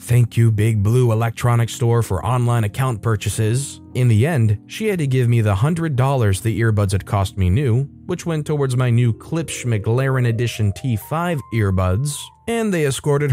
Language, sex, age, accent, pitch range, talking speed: English, male, 30-49, American, 105-140 Hz, 175 wpm